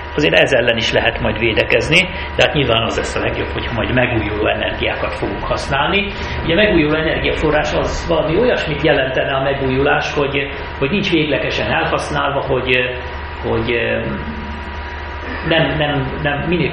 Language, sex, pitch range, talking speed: Hungarian, male, 105-160 Hz, 145 wpm